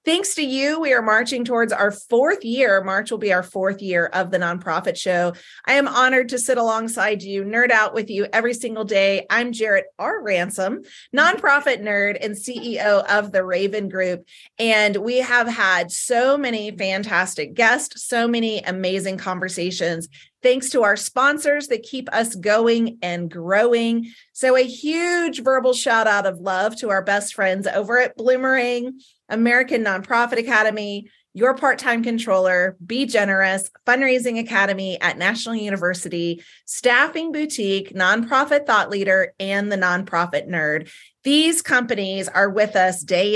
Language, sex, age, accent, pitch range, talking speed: English, female, 30-49, American, 190-250 Hz, 155 wpm